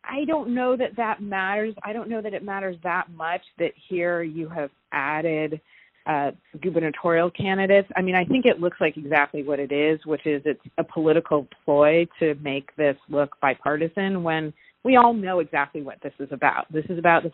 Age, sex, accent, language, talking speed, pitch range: 30-49, female, American, English, 195 wpm, 150-195 Hz